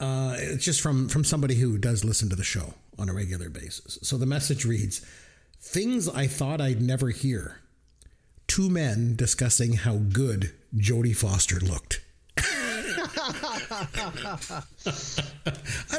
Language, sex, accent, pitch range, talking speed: English, male, American, 110-145 Hz, 130 wpm